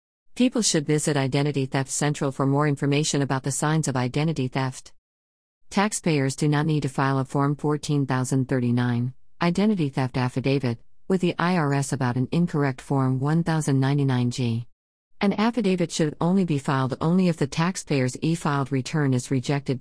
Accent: American